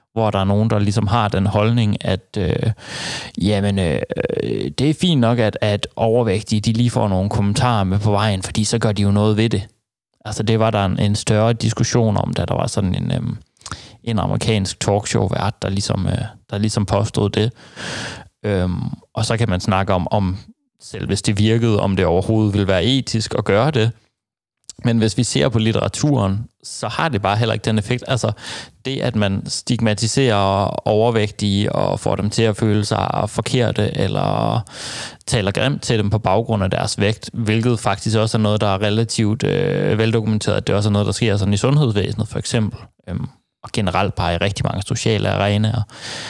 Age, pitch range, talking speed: 30-49, 100-115 Hz, 180 wpm